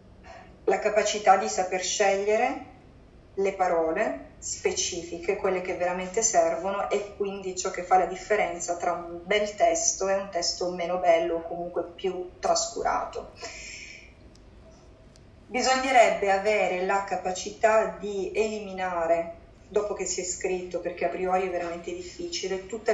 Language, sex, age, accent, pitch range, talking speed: Italian, female, 30-49, native, 180-210 Hz, 130 wpm